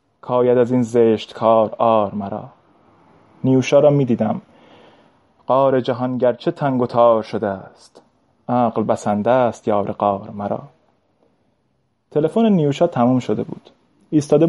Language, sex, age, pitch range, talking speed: Persian, male, 20-39, 115-145 Hz, 120 wpm